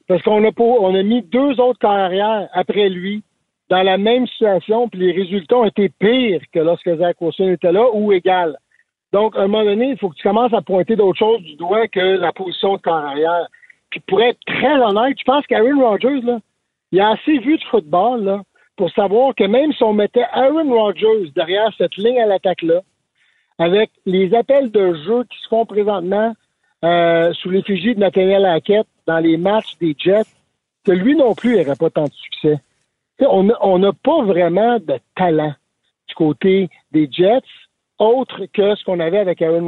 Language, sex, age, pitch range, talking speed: French, male, 60-79, 180-230 Hz, 195 wpm